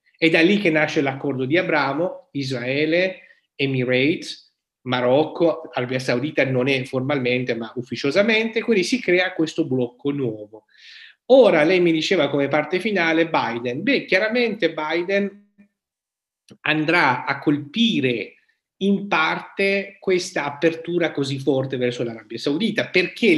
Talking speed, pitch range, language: 125 wpm, 130-200 Hz, Italian